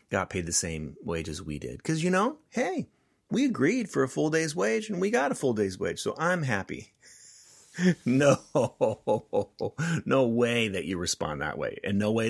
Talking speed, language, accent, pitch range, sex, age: 195 wpm, English, American, 90-130 Hz, male, 30-49